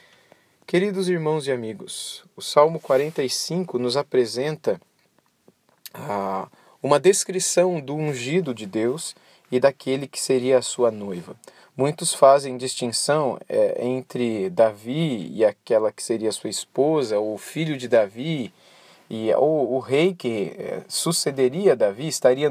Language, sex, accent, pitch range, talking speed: Portuguese, male, Brazilian, 125-155 Hz, 135 wpm